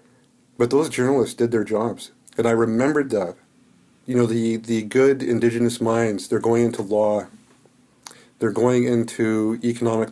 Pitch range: 110-125 Hz